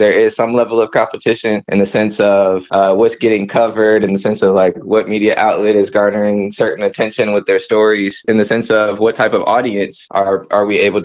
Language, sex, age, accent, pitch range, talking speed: English, male, 20-39, American, 105-120 Hz, 225 wpm